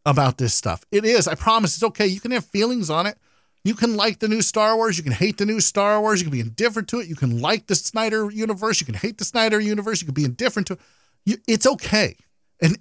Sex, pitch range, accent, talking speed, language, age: male, 145-205 Hz, American, 260 wpm, English, 40-59